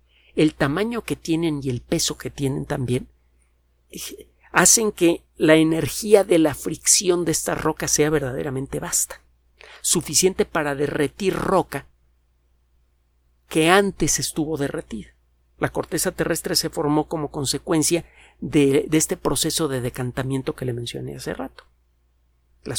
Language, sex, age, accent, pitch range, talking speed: Spanish, male, 50-69, Mexican, 130-165 Hz, 130 wpm